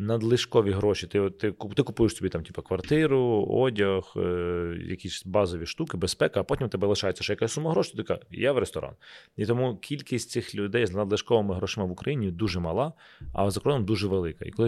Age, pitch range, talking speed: 30-49, 95-130 Hz, 195 wpm